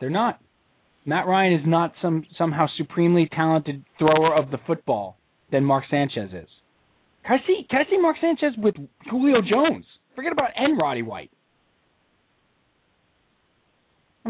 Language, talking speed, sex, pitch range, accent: English, 145 wpm, male, 135-210 Hz, American